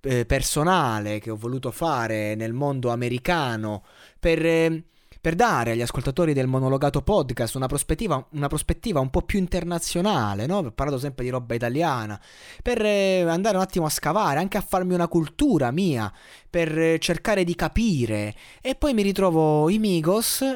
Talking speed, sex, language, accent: 150 wpm, male, Italian, native